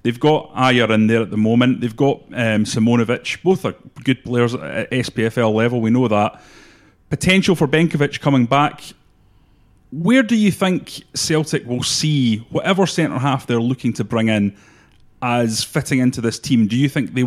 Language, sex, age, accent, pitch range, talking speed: English, male, 30-49, British, 110-140 Hz, 175 wpm